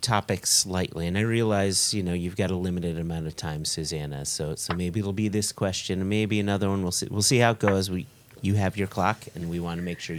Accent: American